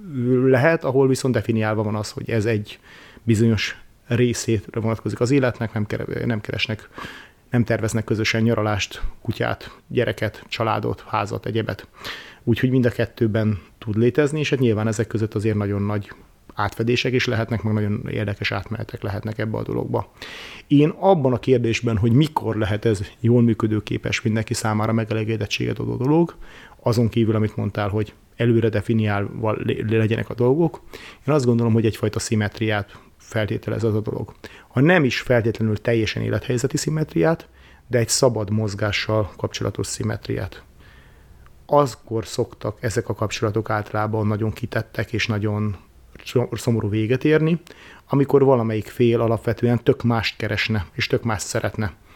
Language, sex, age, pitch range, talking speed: Hungarian, male, 30-49, 105-125 Hz, 140 wpm